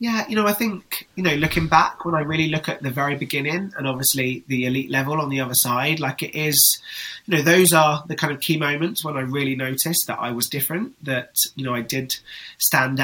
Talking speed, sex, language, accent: 240 wpm, male, English, British